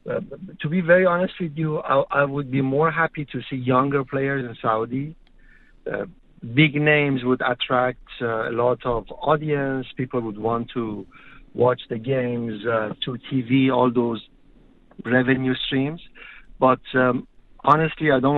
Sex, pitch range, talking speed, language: male, 115-135 Hz, 155 wpm, English